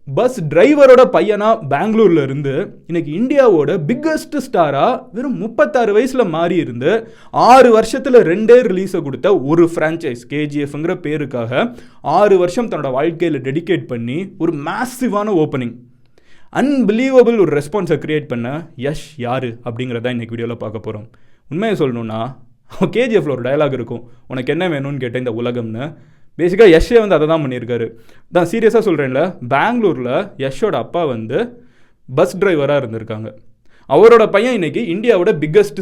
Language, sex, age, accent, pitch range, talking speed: Tamil, male, 20-39, native, 130-205 Hz, 75 wpm